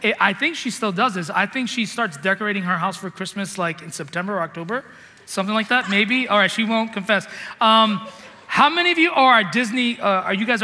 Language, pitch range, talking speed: English, 175-225 Hz, 225 wpm